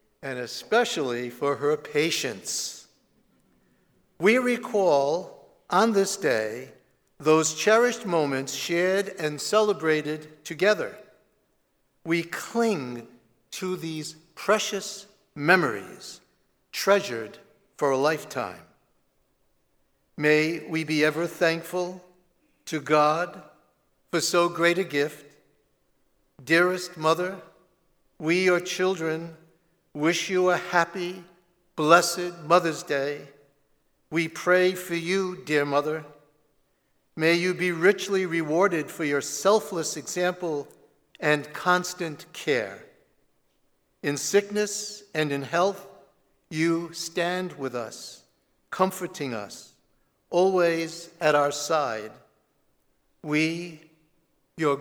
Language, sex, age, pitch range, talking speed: English, male, 60-79, 150-180 Hz, 95 wpm